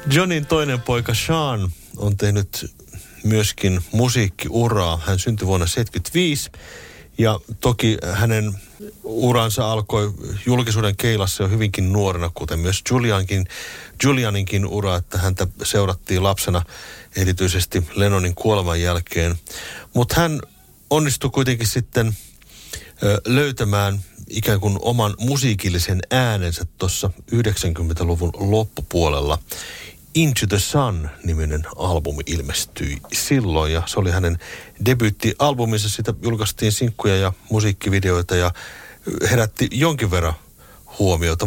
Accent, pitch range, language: native, 95-125 Hz, Finnish